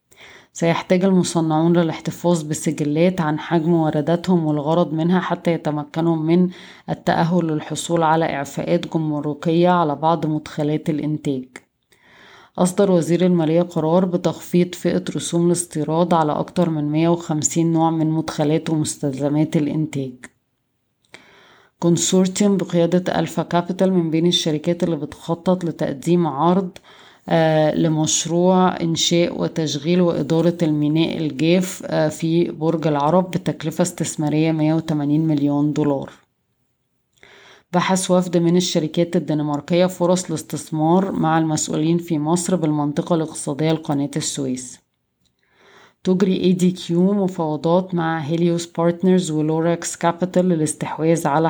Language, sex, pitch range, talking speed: Arabic, female, 155-175 Hz, 105 wpm